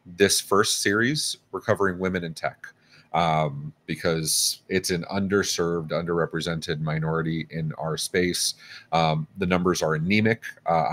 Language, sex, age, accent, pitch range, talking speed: English, male, 30-49, American, 85-110 Hz, 125 wpm